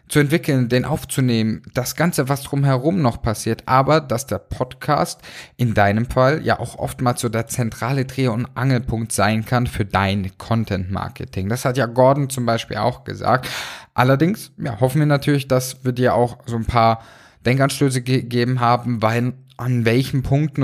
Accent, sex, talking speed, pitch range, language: German, male, 170 wpm, 115-135 Hz, German